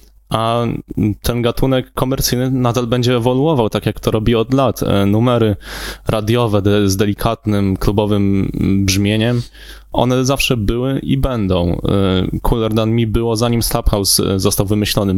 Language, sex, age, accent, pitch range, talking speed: Polish, male, 20-39, native, 100-120 Hz, 125 wpm